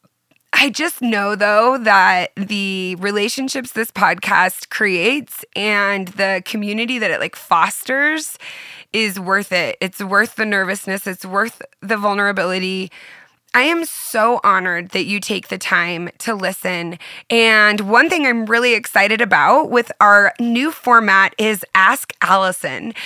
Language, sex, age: English, female, 20-39